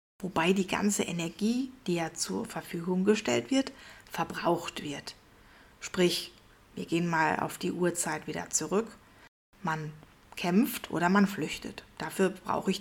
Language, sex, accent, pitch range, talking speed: German, female, German, 165-205 Hz, 135 wpm